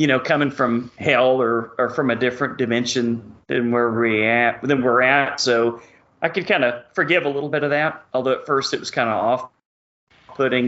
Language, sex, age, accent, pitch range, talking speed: English, male, 40-59, American, 120-145 Hz, 215 wpm